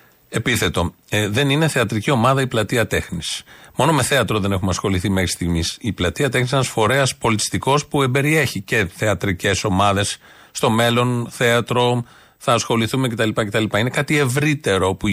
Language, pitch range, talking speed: Greek, 100-140 Hz, 160 wpm